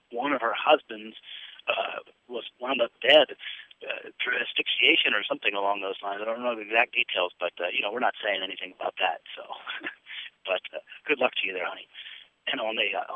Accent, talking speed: American, 210 wpm